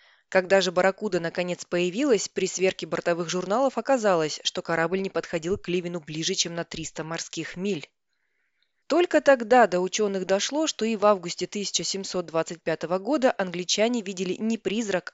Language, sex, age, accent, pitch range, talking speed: Russian, female, 20-39, native, 175-225 Hz, 145 wpm